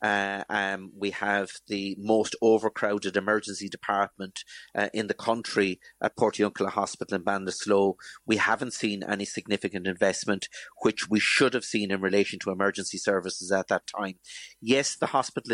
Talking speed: 155 wpm